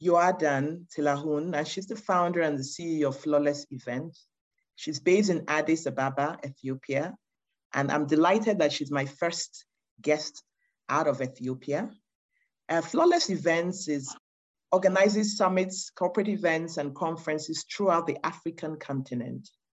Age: 40-59